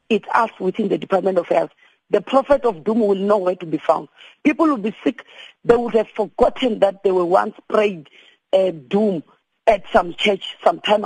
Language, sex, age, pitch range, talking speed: English, female, 40-59, 195-250 Hz, 200 wpm